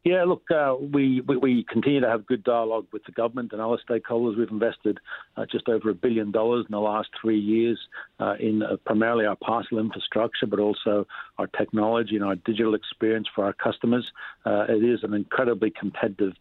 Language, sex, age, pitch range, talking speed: English, male, 50-69, 105-115 Hz, 195 wpm